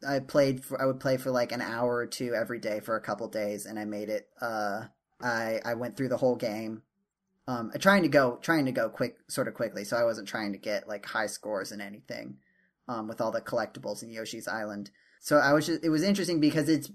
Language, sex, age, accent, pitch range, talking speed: English, male, 10-29, American, 120-145 Hz, 250 wpm